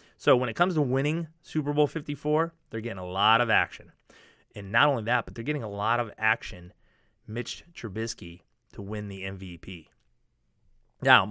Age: 30-49